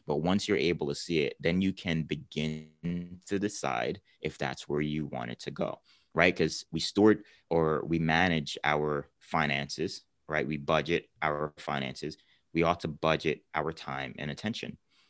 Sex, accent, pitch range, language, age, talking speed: male, American, 75-90 Hz, English, 30-49, 170 wpm